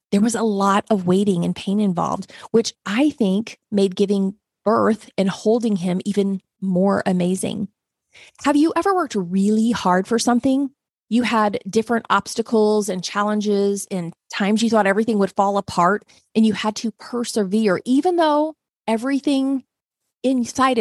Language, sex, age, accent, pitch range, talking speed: English, female, 30-49, American, 195-235 Hz, 150 wpm